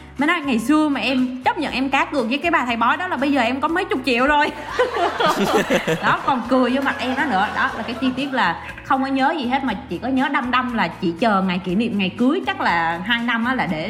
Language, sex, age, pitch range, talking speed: Vietnamese, female, 20-39, 215-270 Hz, 285 wpm